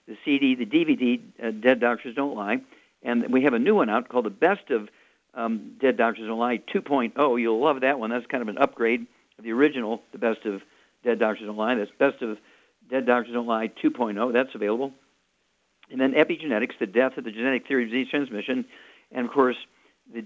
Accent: American